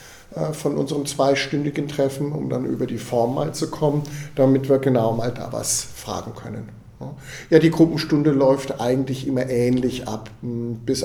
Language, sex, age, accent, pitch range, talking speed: German, male, 50-69, German, 120-140 Hz, 160 wpm